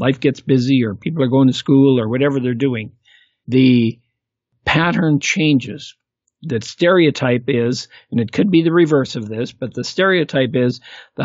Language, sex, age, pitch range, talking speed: English, male, 50-69, 120-150 Hz, 170 wpm